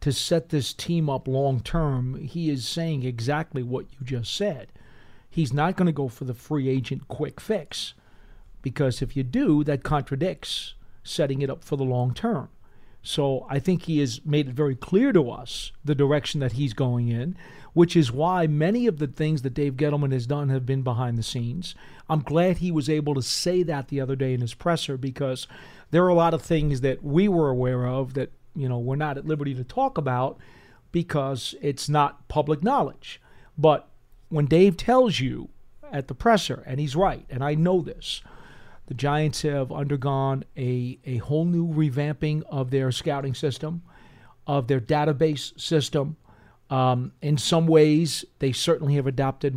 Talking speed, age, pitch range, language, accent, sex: 185 wpm, 40-59, 130-155 Hz, English, American, male